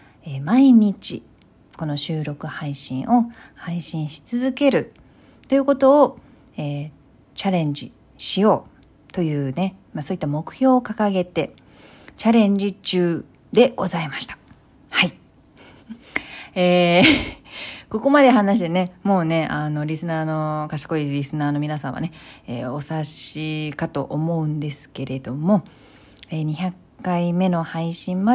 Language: Japanese